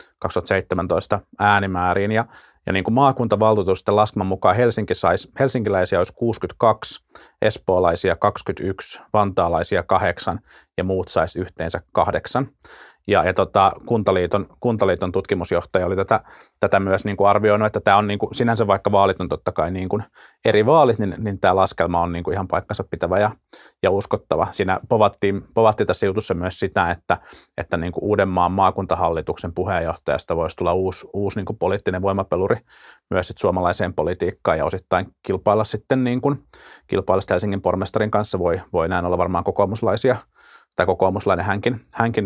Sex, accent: male, native